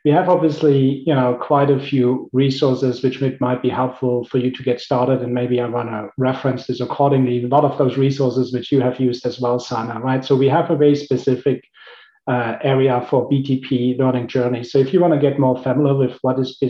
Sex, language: male, English